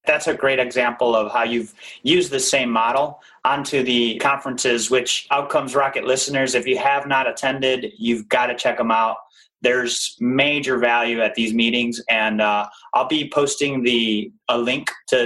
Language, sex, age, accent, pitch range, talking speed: English, male, 30-49, American, 120-150 Hz, 175 wpm